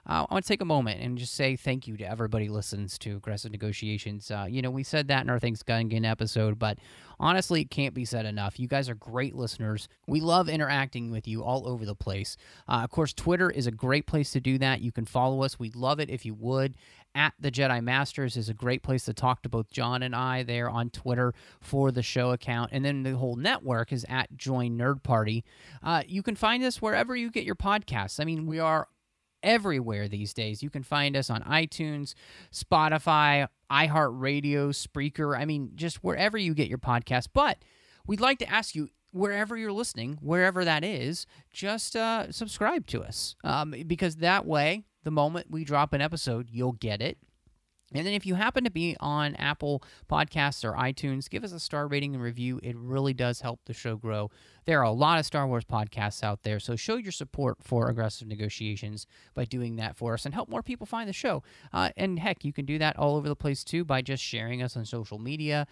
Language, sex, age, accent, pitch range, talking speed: English, male, 30-49, American, 115-150 Hz, 220 wpm